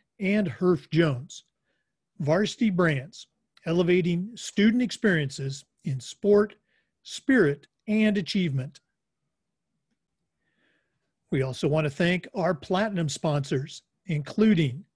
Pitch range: 150-190 Hz